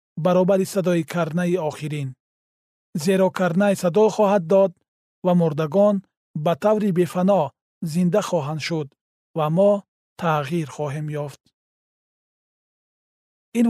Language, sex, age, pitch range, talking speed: Persian, male, 40-59, 160-195 Hz, 100 wpm